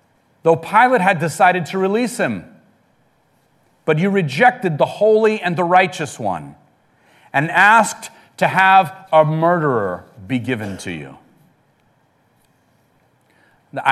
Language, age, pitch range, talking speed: English, 40-59, 145-215 Hz, 115 wpm